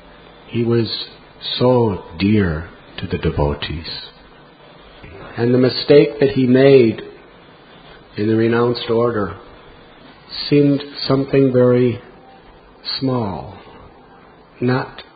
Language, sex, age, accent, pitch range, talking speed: English, male, 50-69, American, 105-135 Hz, 85 wpm